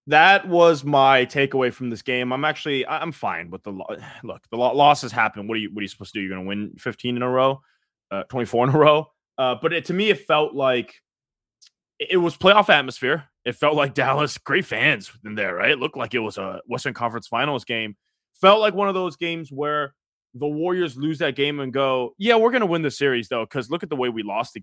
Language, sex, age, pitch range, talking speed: English, male, 20-39, 115-150 Hz, 245 wpm